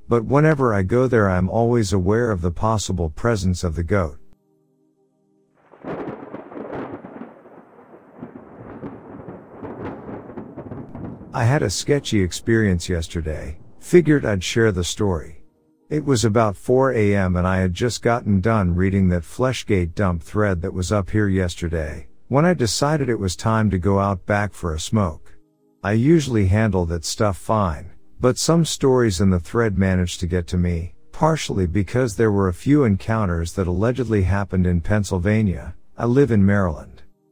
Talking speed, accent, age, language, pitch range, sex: 150 wpm, American, 50-69, English, 90-115 Hz, male